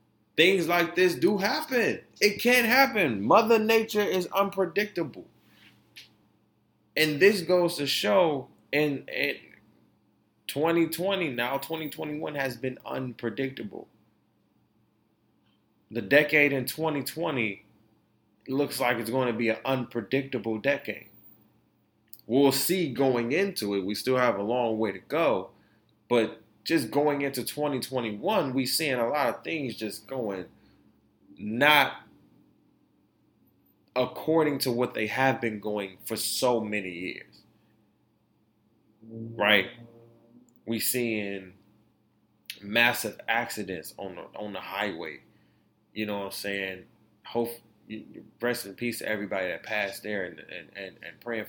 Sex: male